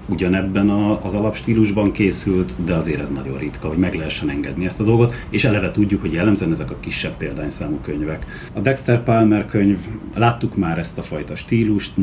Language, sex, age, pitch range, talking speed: Hungarian, male, 30-49, 80-110 Hz, 180 wpm